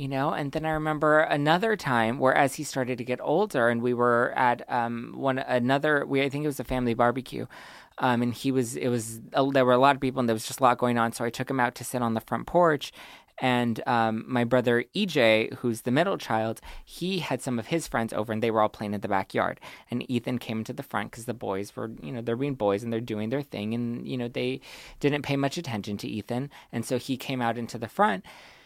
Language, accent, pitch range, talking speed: English, American, 120-165 Hz, 260 wpm